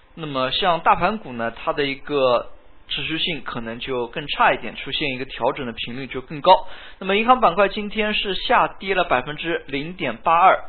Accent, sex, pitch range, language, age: native, male, 135-195 Hz, Chinese, 20-39